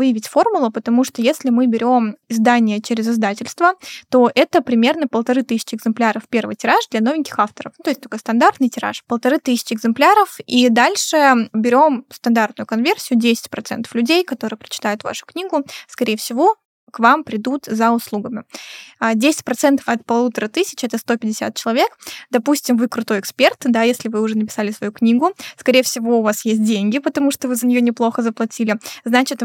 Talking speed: 165 wpm